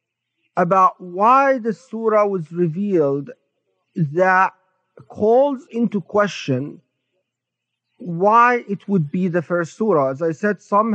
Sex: male